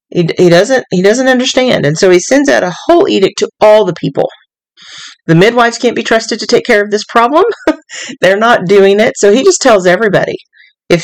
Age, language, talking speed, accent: 40-59, English, 200 wpm, American